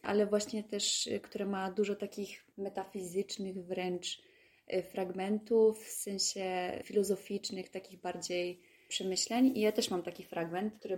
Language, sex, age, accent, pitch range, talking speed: Polish, female, 20-39, native, 190-215 Hz, 125 wpm